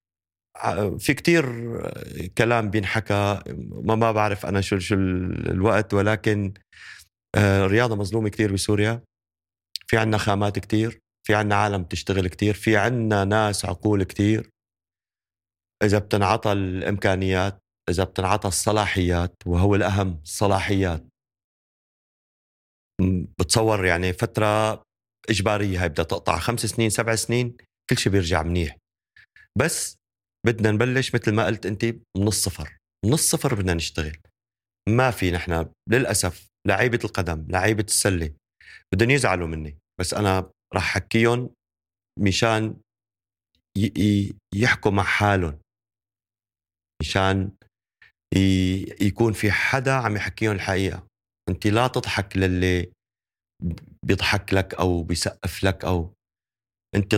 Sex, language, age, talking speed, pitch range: male, Arabic, 30-49, 110 wpm, 90-110 Hz